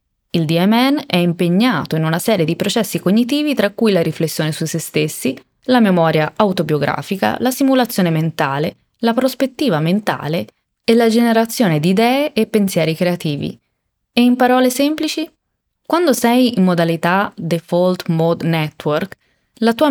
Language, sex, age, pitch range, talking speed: Italian, female, 20-39, 165-235 Hz, 140 wpm